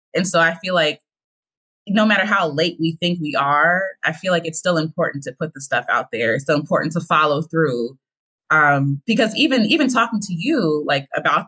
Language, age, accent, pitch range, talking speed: English, 20-39, American, 160-215 Hz, 210 wpm